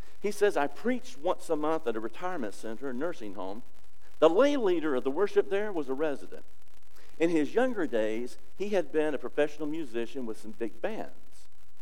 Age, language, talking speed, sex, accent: 50-69, English, 195 wpm, male, American